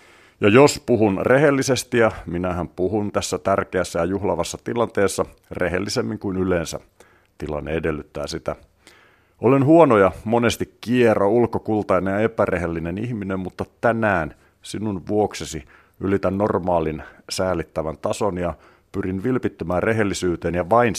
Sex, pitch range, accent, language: male, 85-110 Hz, native, Finnish